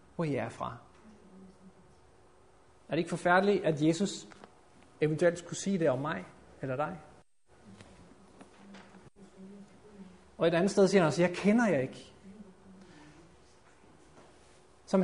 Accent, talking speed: native, 110 wpm